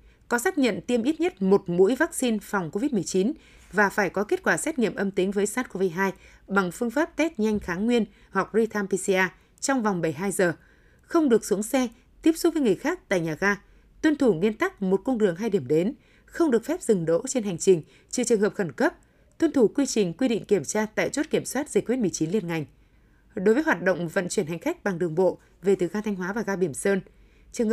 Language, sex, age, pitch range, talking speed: Vietnamese, female, 20-39, 185-245 Hz, 235 wpm